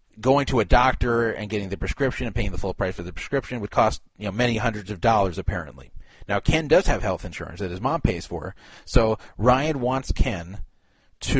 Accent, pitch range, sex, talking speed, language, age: American, 100-125 Hz, male, 215 wpm, English, 30-49